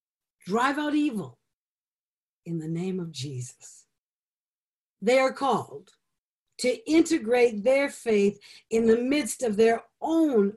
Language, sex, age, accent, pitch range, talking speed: English, female, 60-79, American, 190-270 Hz, 120 wpm